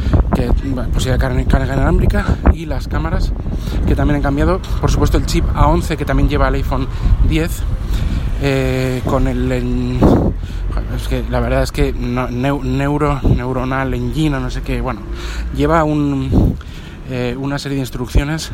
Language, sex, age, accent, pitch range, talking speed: Spanish, male, 20-39, Spanish, 115-135 Hz, 160 wpm